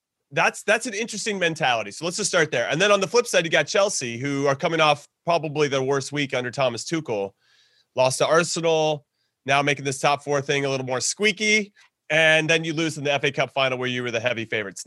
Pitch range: 135-195 Hz